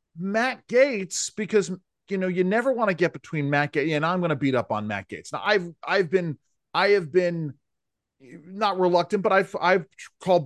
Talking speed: 205 wpm